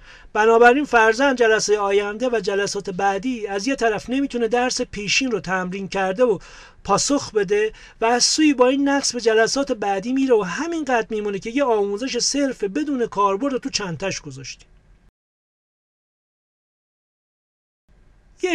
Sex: male